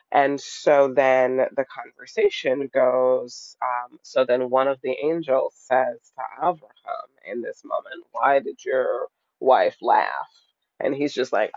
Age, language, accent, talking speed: 30-49, English, American, 145 wpm